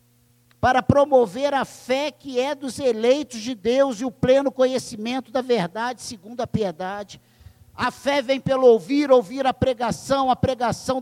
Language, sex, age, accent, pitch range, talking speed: Portuguese, male, 50-69, Brazilian, 175-255 Hz, 160 wpm